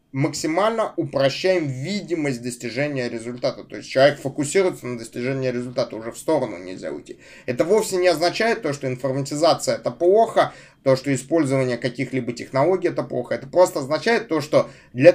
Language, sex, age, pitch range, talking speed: Russian, male, 20-39, 130-170 Hz, 155 wpm